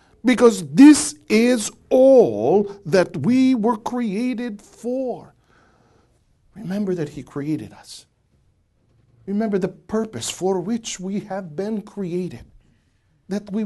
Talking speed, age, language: 110 wpm, 50-69, English